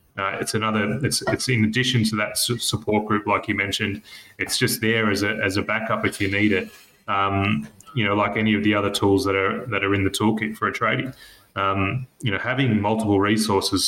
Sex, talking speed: male, 220 wpm